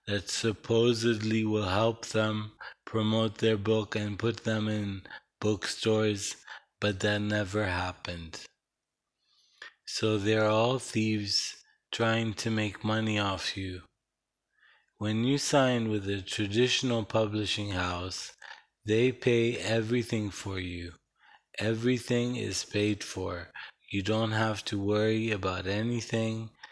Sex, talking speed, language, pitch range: male, 115 wpm, English, 100-115 Hz